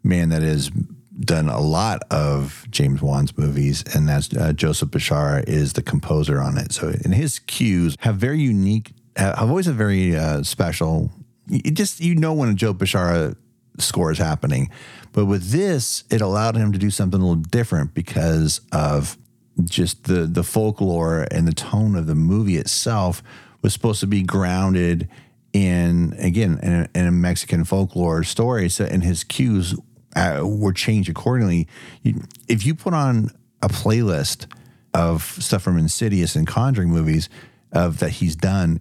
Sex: male